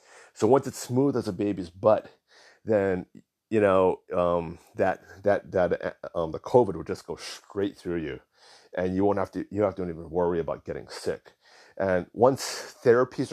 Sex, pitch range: male, 90-110 Hz